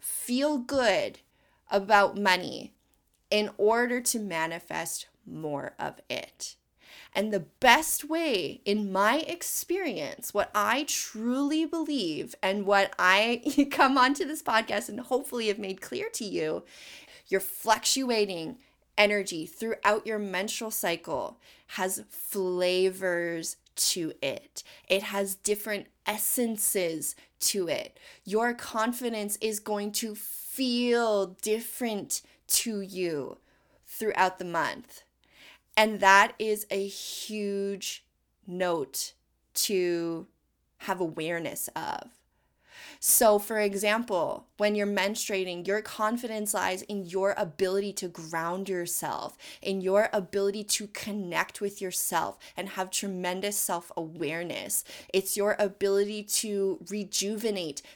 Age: 20-39